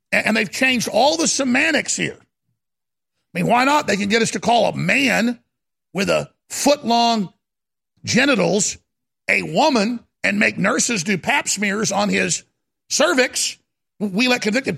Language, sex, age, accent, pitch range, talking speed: English, male, 50-69, American, 195-245 Hz, 150 wpm